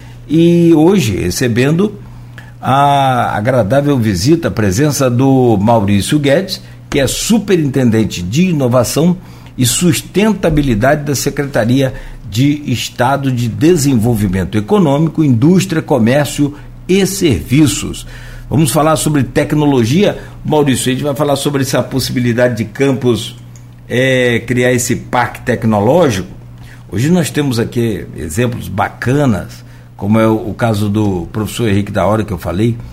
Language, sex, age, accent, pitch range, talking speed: Portuguese, male, 60-79, Brazilian, 110-145 Hz, 120 wpm